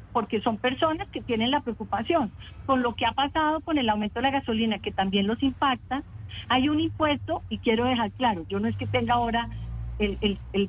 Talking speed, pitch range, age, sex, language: 210 wpm, 225-280 Hz, 50-69, female, Spanish